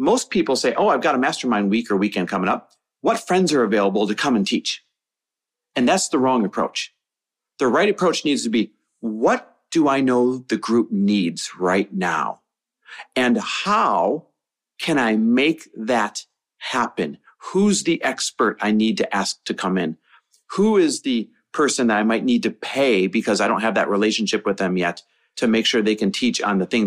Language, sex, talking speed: English, male, 190 wpm